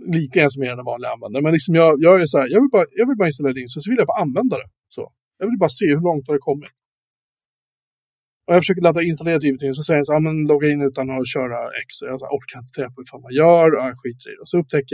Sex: male